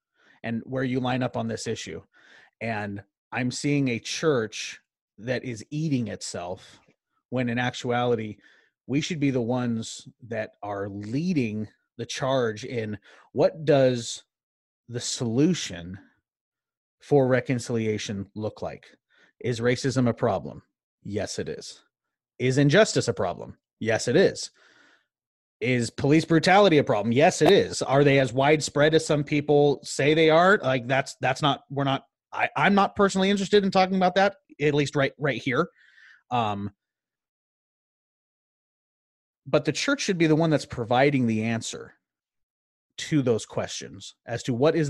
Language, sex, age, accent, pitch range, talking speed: English, male, 30-49, American, 115-150 Hz, 145 wpm